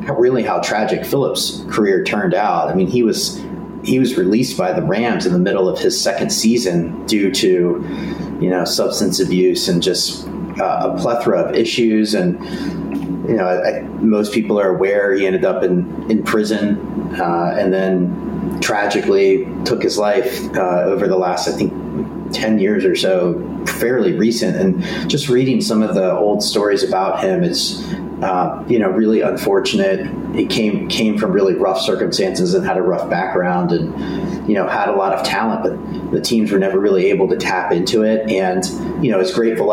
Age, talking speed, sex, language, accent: 30-49, 185 wpm, male, English, American